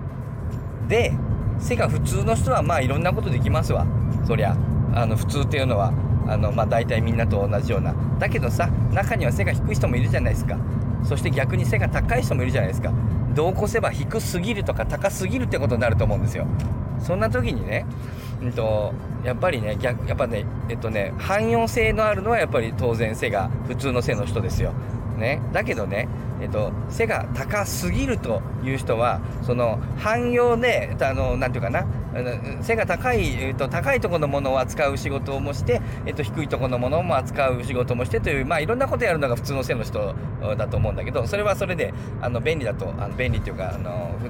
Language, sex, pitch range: Japanese, male, 115-130 Hz